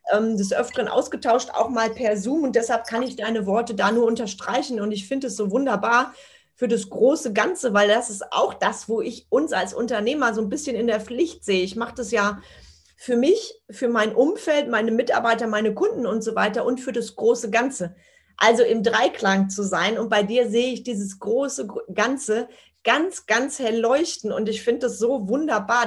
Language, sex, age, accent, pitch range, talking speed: German, female, 30-49, German, 220-255 Hz, 200 wpm